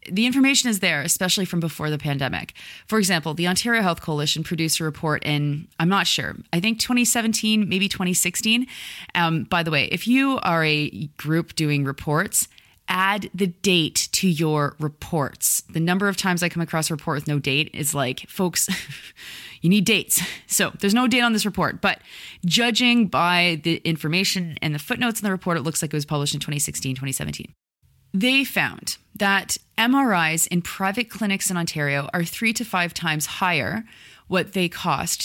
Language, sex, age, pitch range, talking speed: English, female, 30-49, 155-200 Hz, 180 wpm